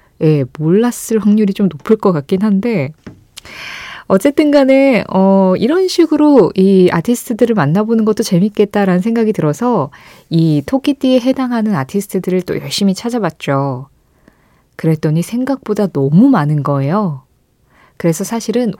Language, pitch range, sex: Korean, 165-245 Hz, female